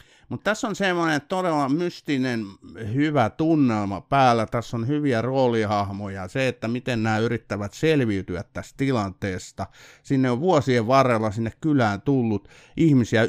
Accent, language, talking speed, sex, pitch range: native, Finnish, 130 wpm, male, 105-135 Hz